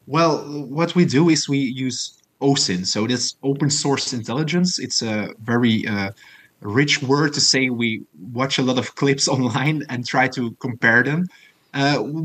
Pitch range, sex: 115-145 Hz, male